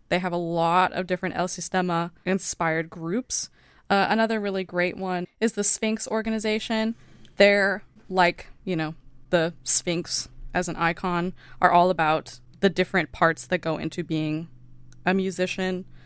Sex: female